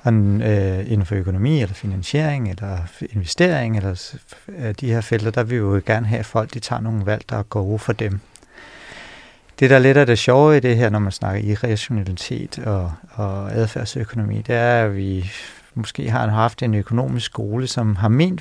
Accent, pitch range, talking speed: native, 110-125 Hz, 185 wpm